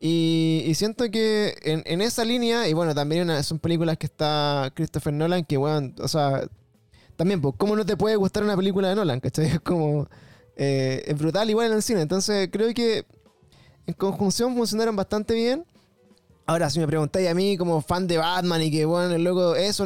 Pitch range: 150-205 Hz